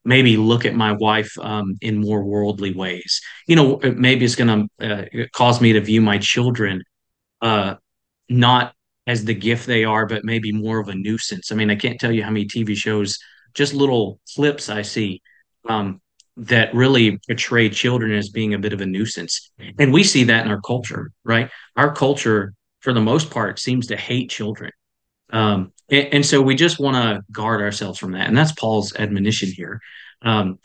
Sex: male